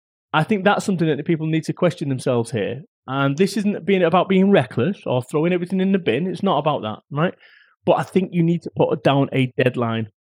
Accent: British